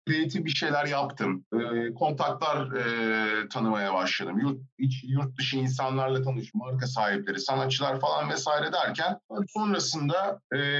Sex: male